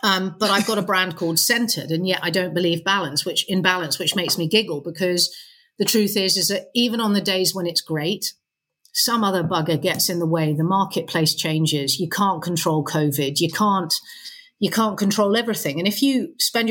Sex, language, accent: female, English, British